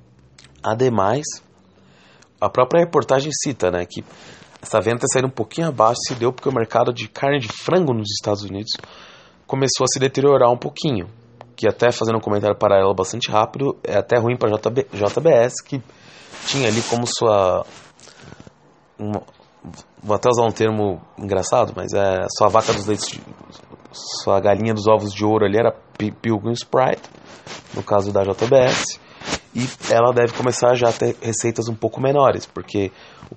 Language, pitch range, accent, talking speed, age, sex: English, 105-125 Hz, Brazilian, 165 wpm, 20-39, male